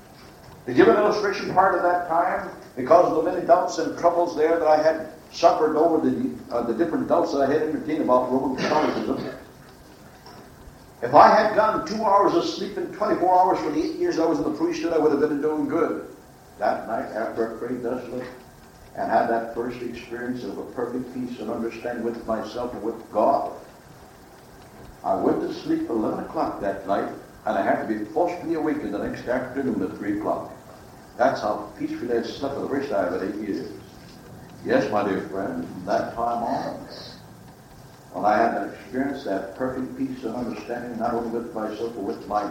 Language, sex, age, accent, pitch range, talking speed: English, male, 60-79, American, 115-170 Hz, 200 wpm